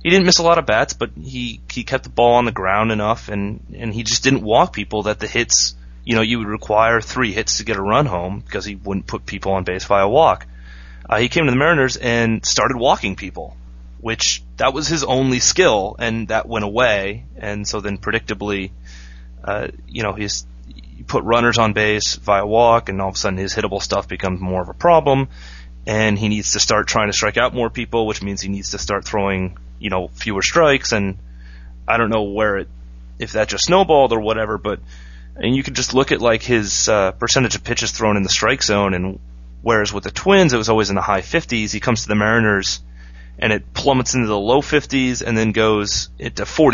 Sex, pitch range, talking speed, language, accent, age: male, 75-115 Hz, 225 wpm, English, American, 30-49